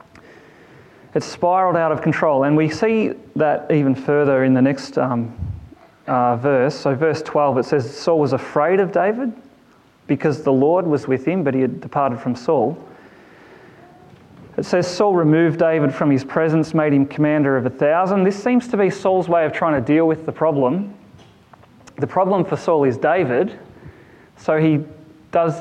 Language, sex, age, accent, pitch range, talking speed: English, male, 30-49, Australian, 140-175 Hz, 175 wpm